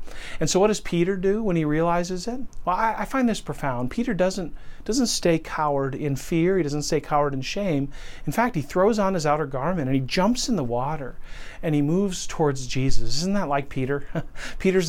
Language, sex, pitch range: English, male, 130-165 Hz